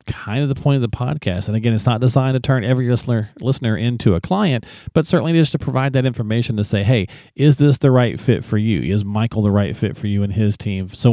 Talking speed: 260 wpm